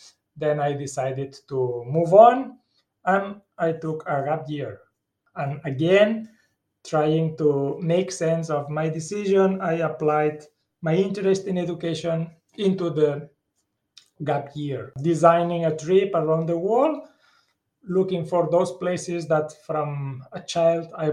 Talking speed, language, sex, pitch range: 130 wpm, English, male, 145-175 Hz